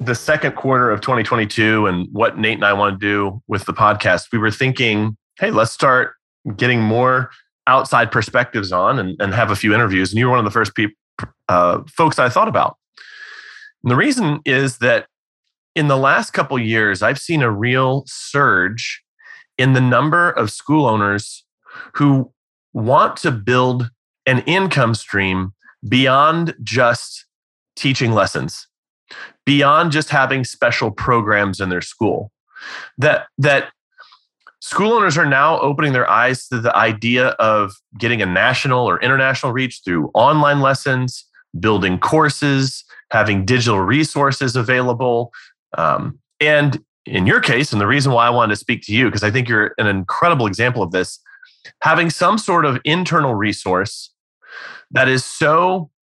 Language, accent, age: English, American, 30-49